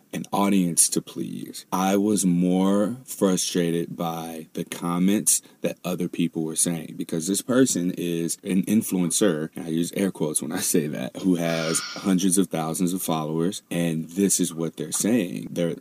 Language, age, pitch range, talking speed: English, 30-49, 85-95 Hz, 170 wpm